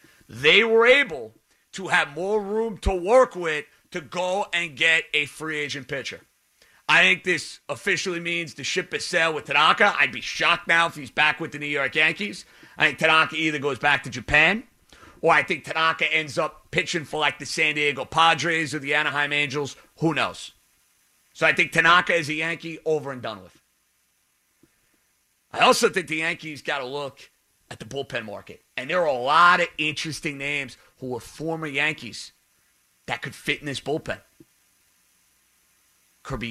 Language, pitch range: English, 145-170 Hz